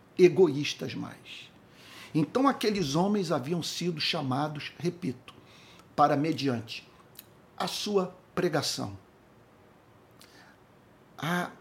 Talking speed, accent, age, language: 80 wpm, Brazilian, 60-79, Portuguese